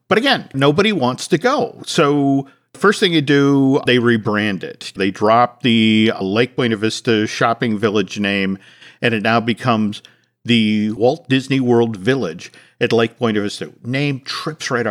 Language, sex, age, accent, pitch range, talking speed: English, male, 50-69, American, 115-145 Hz, 155 wpm